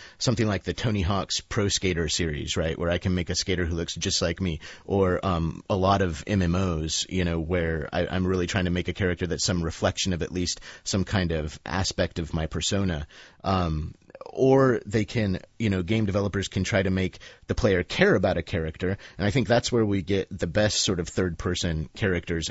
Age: 30-49